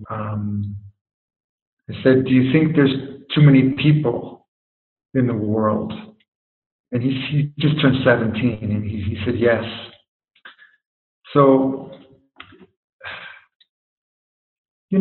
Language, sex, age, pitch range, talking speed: English, male, 50-69, 120-140 Hz, 105 wpm